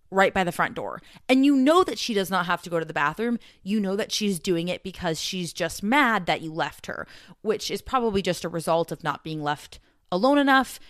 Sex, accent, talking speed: female, American, 240 wpm